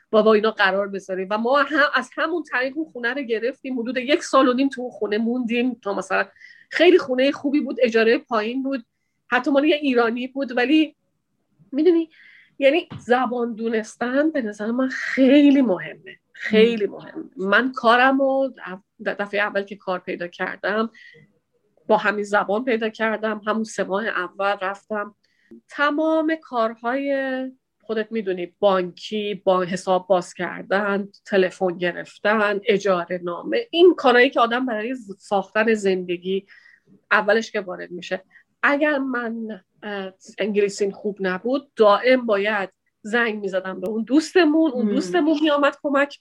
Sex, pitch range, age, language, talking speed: female, 200-275 Hz, 30-49, Persian, 140 wpm